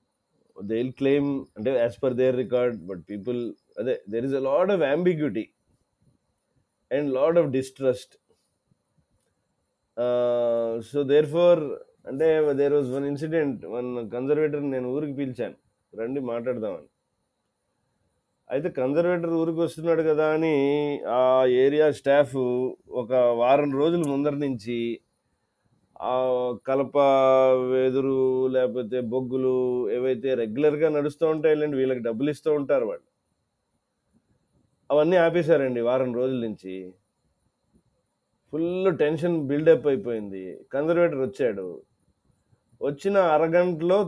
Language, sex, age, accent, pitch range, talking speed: Telugu, male, 30-49, native, 125-160 Hz, 100 wpm